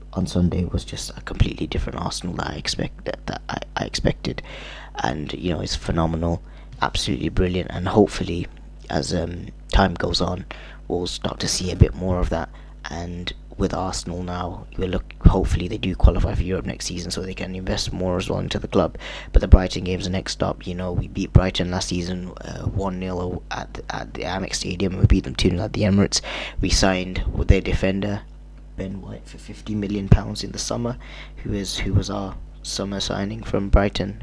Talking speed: 200 wpm